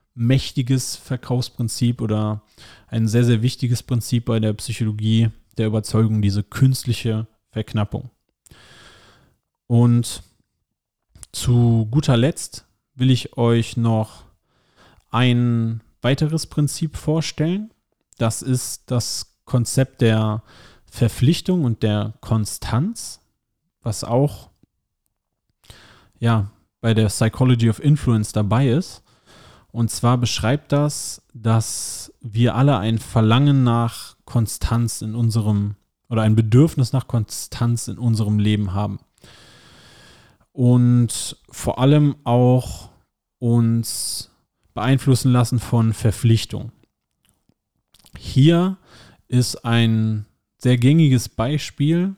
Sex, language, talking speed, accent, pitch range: male, German, 95 wpm, German, 110-130 Hz